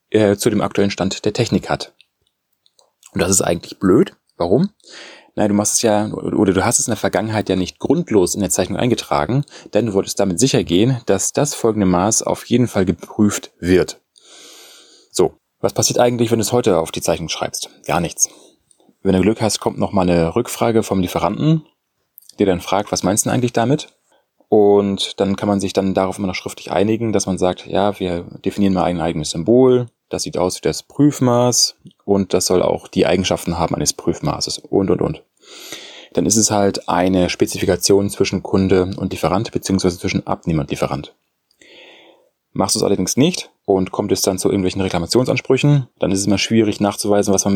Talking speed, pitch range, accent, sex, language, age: 195 wpm, 95-115 Hz, German, male, German, 30-49